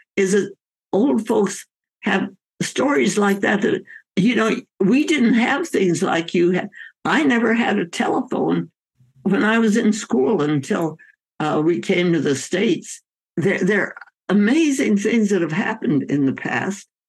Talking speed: 160 wpm